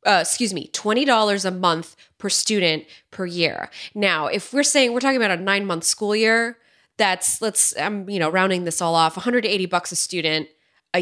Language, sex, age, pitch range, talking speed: English, female, 20-39, 160-205 Hz, 190 wpm